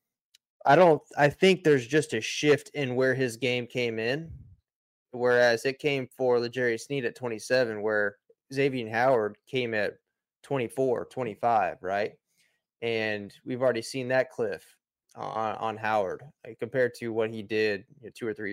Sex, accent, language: male, American, English